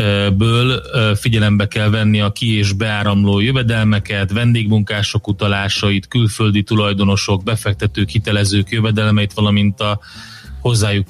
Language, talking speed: Hungarian, 105 wpm